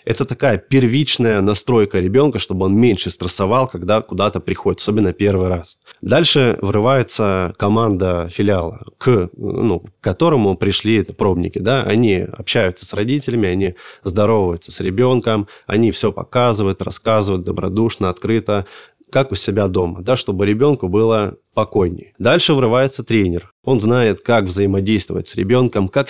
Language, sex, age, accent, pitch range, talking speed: Russian, male, 20-39, native, 95-120 Hz, 135 wpm